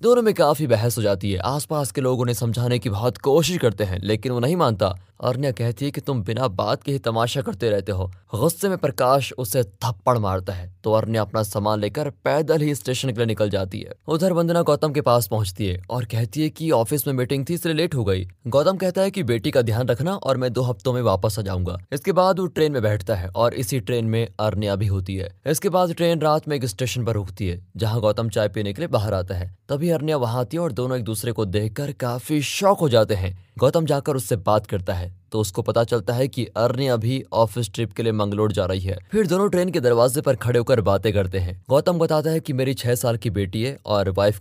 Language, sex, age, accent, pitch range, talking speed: Hindi, male, 20-39, native, 105-150 Hz, 240 wpm